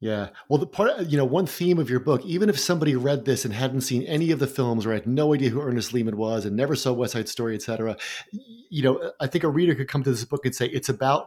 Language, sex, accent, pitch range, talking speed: English, male, American, 125-155 Hz, 280 wpm